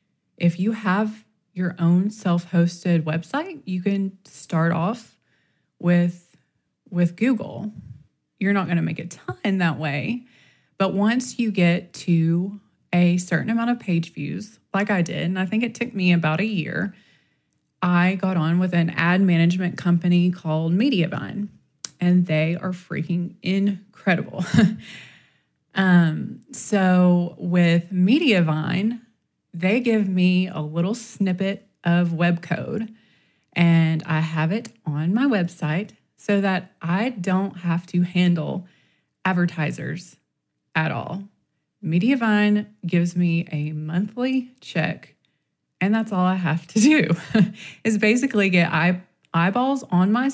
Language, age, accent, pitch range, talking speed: English, 20-39, American, 170-210 Hz, 130 wpm